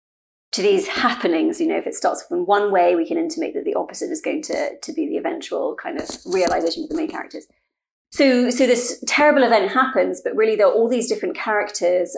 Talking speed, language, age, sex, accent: 220 wpm, English, 30-49, female, British